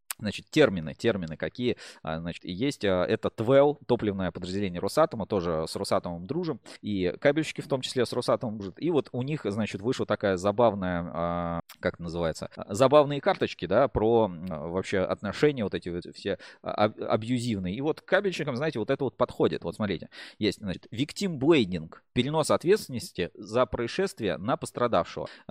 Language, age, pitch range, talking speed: Russian, 20-39, 100-145 Hz, 145 wpm